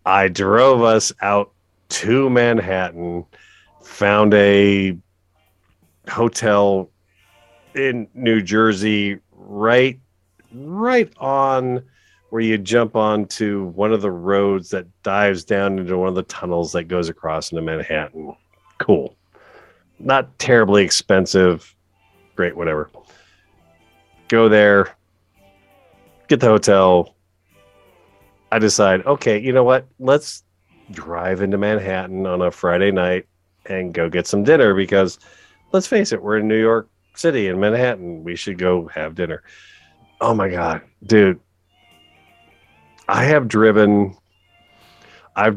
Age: 40-59